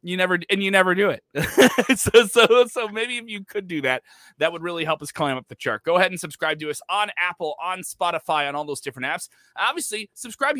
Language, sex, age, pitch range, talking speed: English, male, 30-49, 125-170 Hz, 240 wpm